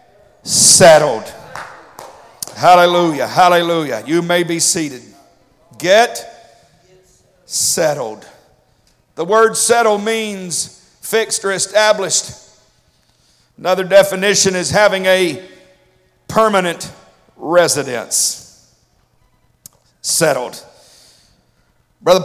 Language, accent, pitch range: English, American, 150-195 Hz